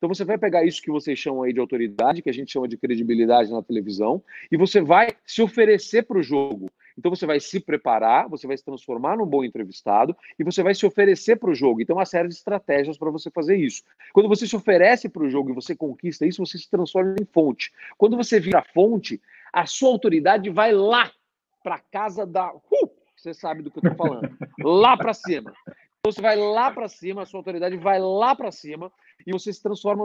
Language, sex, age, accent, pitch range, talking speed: Portuguese, male, 40-59, Brazilian, 150-205 Hz, 225 wpm